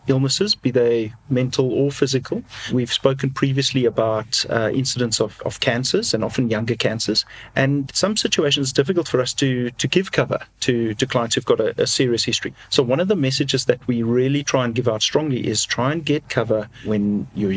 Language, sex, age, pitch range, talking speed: English, male, 40-59, 115-140 Hz, 200 wpm